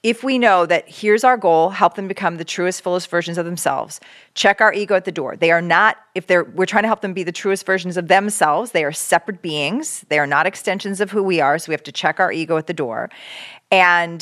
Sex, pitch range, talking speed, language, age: female, 165-210 Hz, 255 wpm, English, 40-59